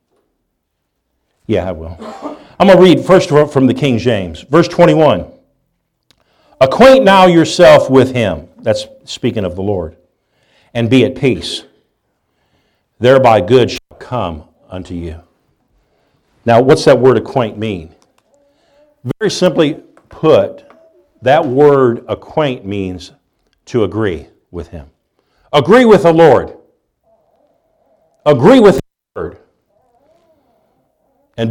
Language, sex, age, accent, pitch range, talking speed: English, male, 50-69, American, 110-180 Hz, 115 wpm